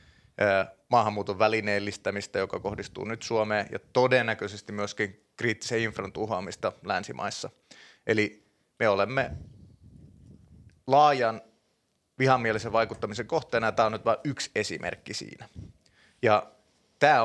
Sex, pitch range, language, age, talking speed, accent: male, 105-120 Hz, Finnish, 30-49, 105 wpm, native